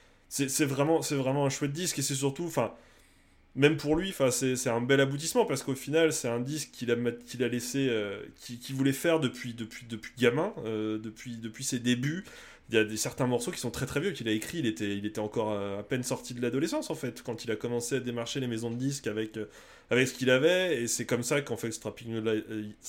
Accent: French